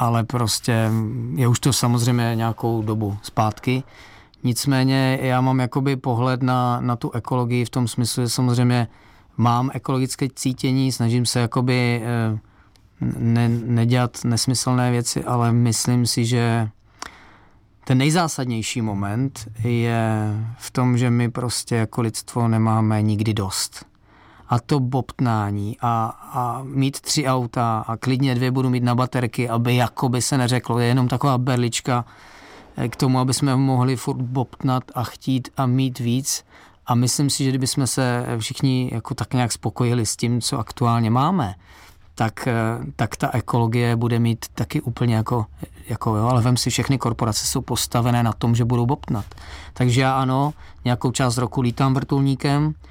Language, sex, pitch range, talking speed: Czech, male, 115-130 Hz, 150 wpm